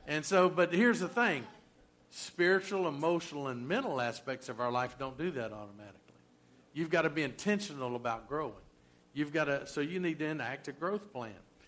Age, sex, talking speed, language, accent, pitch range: 50-69, male, 185 wpm, English, American, 130-180 Hz